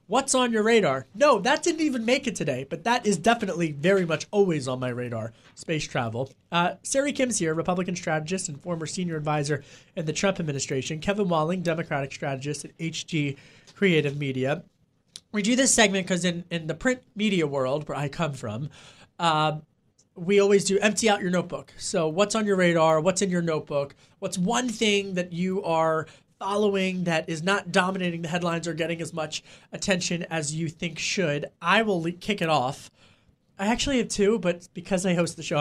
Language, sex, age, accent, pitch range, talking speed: English, male, 30-49, American, 155-205 Hz, 190 wpm